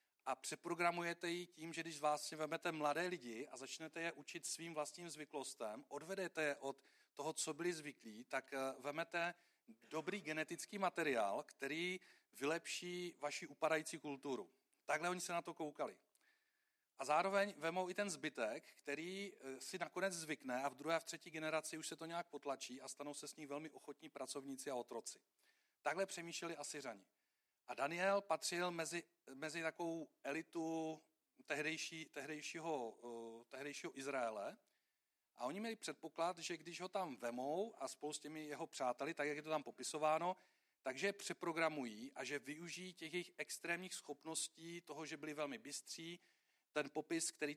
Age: 40-59